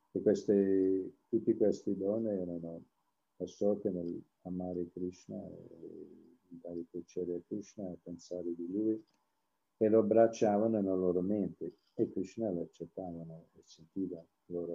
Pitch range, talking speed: 95-120 Hz, 120 wpm